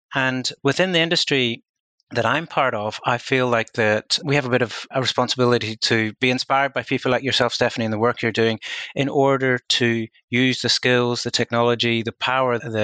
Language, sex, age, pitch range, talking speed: English, male, 30-49, 105-120 Hz, 200 wpm